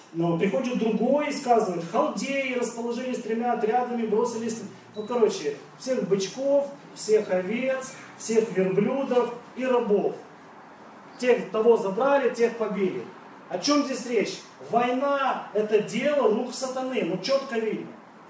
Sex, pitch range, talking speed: male, 210-260 Hz, 120 wpm